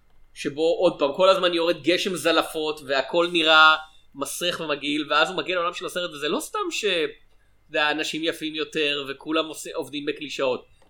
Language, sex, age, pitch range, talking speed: Hebrew, male, 30-49, 140-180 Hz, 150 wpm